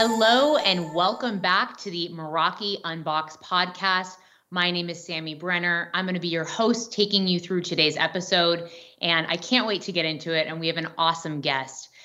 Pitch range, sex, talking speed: 170-225 Hz, female, 195 wpm